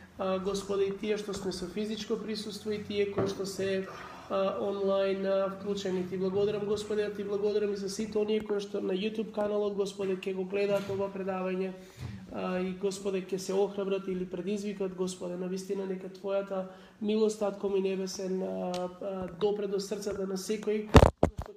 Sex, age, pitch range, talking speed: male, 20-39, 190-205 Hz, 160 wpm